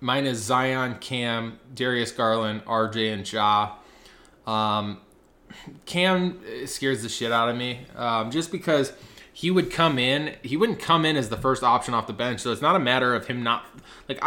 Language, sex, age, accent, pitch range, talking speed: English, male, 20-39, American, 115-140 Hz, 185 wpm